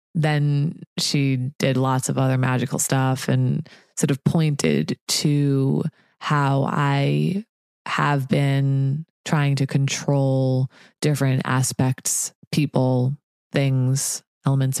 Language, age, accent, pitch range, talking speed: English, 20-39, American, 135-160 Hz, 100 wpm